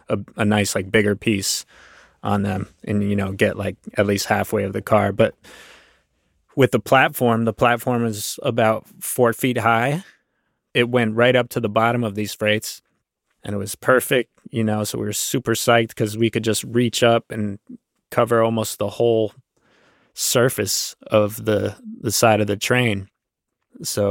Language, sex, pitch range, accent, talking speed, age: English, male, 105-120 Hz, American, 175 wpm, 20-39